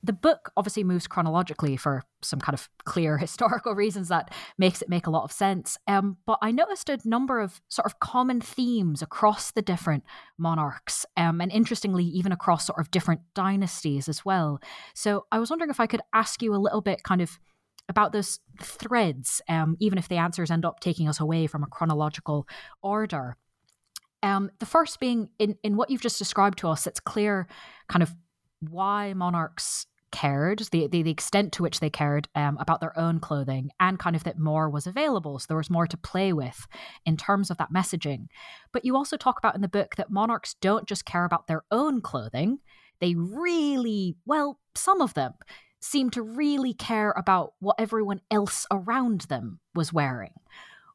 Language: English